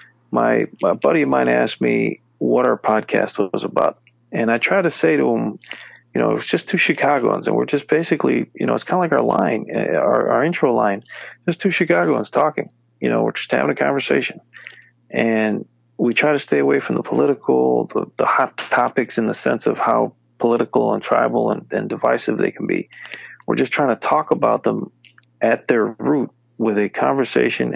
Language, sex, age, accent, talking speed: English, male, 40-59, American, 200 wpm